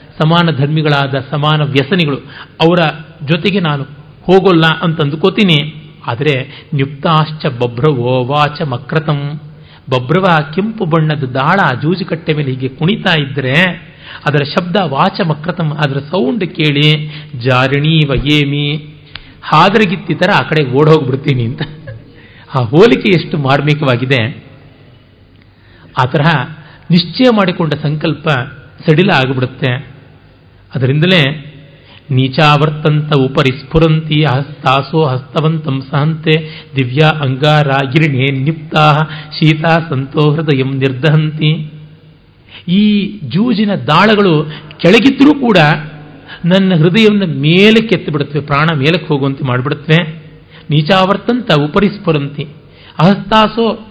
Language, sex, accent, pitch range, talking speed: Kannada, male, native, 140-175 Hz, 85 wpm